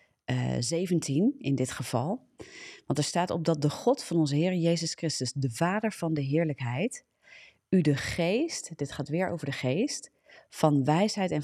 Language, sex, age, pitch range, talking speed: Dutch, female, 30-49, 140-180 Hz, 180 wpm